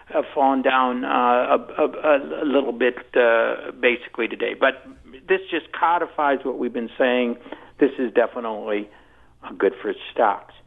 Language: English